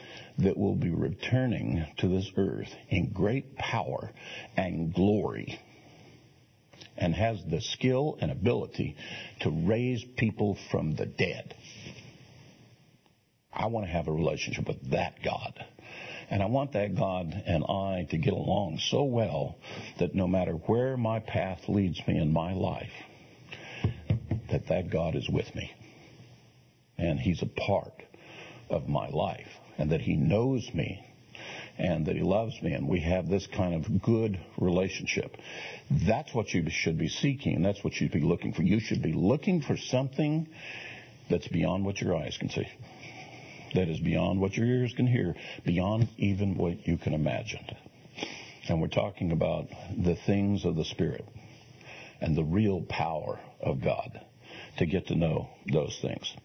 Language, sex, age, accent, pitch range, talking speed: English, male, 60-79, American, 90-120 Hz, 160 wpm